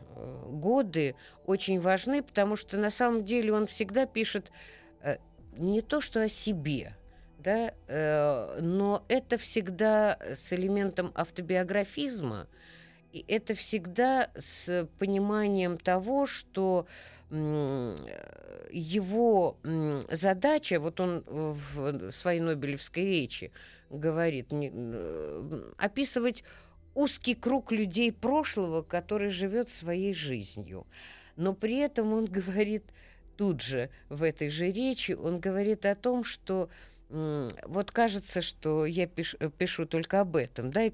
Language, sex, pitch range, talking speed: Russian, female, 150-210 Hz, 110 wpm